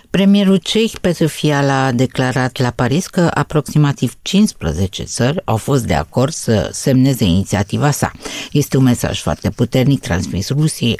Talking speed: 155 wpm